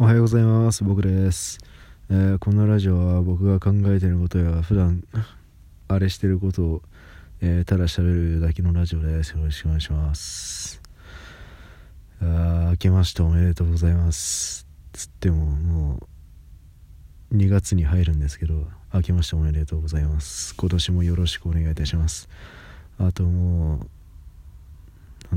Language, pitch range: Japanese, 80-95 Hz